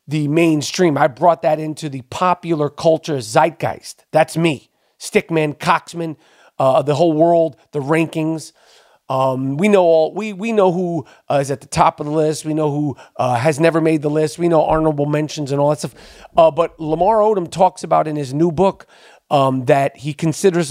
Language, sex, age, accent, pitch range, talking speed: English, male, 40-59, American, 145-180 Hz, 195 wpm